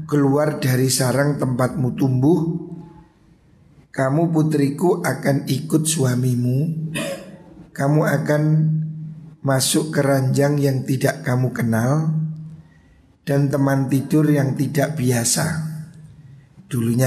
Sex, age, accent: male, 50-69, native